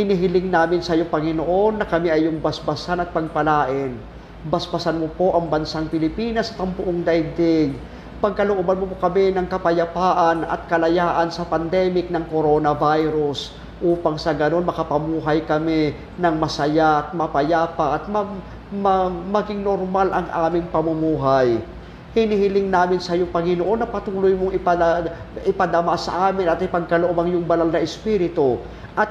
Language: Filipino